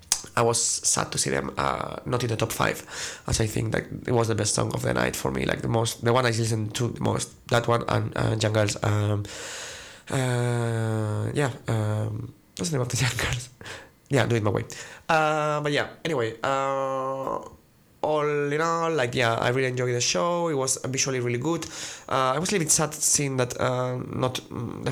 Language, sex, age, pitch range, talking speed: English, male, 20-39, 110-135 Hz, 215 wpm